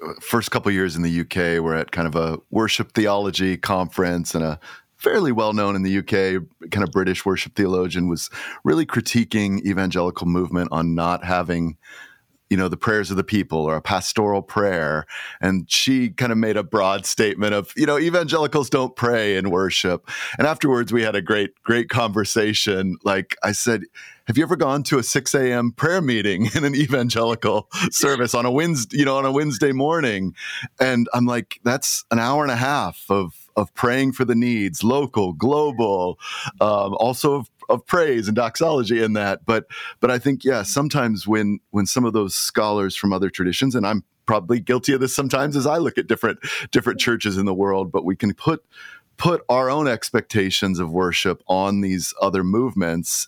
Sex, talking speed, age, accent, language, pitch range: male, 190 wpm, 30-49, American, English, 95-120 Hz